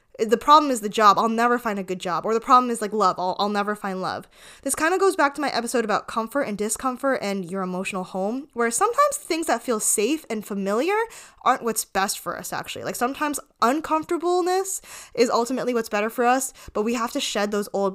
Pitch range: 200-270 Hz